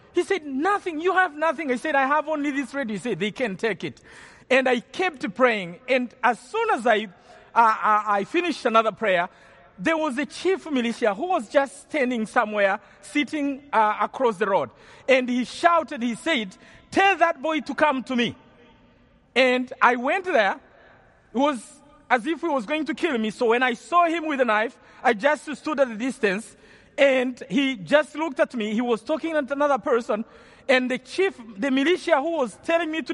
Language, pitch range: English, 235-315 Hz